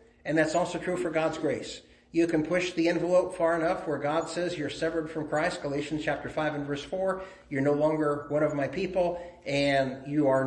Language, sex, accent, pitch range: English, male, American, 145-175 Hz